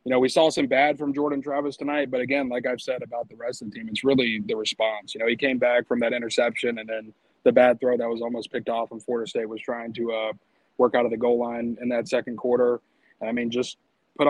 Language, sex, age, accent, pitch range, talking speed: English, male, 20-39, American, 115-135 Hz, 270 wpm